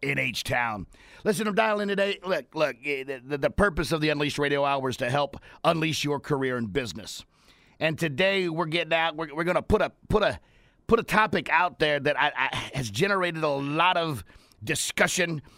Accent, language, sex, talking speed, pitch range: American, English, male, 195 wpm, 135-170 Hz